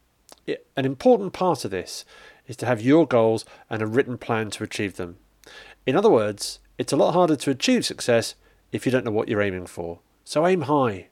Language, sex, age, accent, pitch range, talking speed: English, male, 40-59, British, 115-150 Hz, 205 wpm